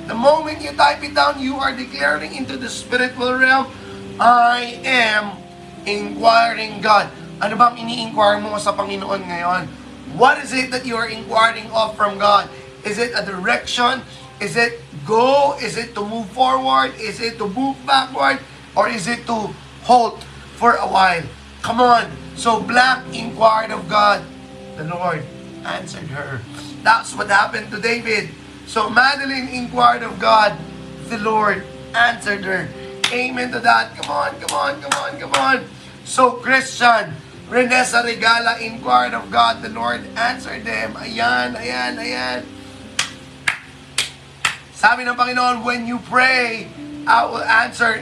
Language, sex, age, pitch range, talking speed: Filipino, male, 20-39, 185-245 Hz, 150 wpm